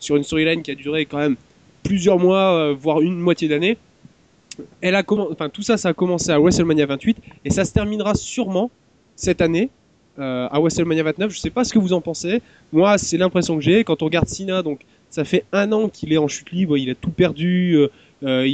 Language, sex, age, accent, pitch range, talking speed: French, male, 20-39, French, 145-190 Hz, 225 wpm